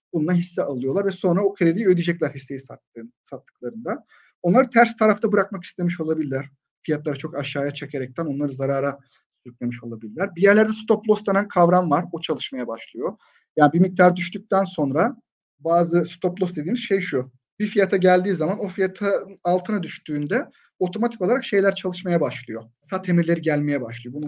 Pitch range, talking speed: 135-190 Hz, 160 wpm